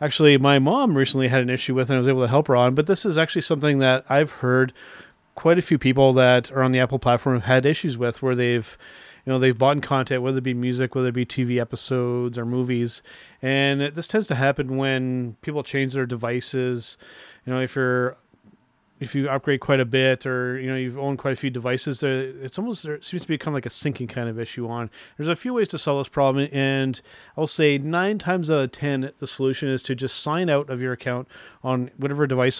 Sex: male